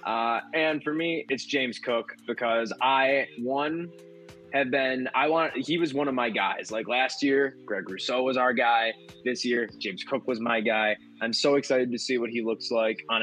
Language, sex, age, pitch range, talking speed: English, male, 20-39, 110-130 Hz, 205 wpm